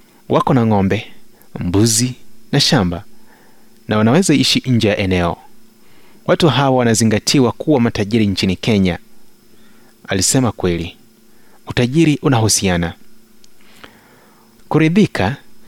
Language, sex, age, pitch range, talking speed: Swahili, male, 30-49, 105-130 Hz, 90 wpm